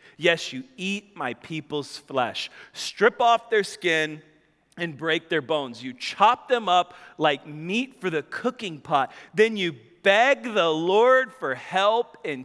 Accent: American